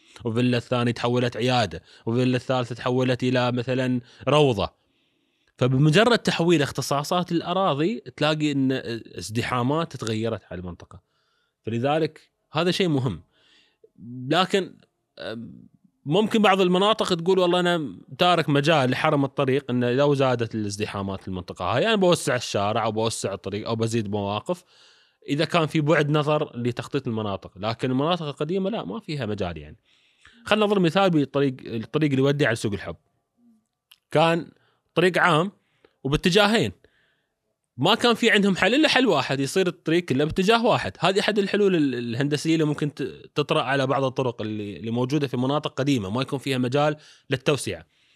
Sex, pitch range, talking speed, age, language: male, 120-165 Hz, 140 wpm, 20-39, Arabic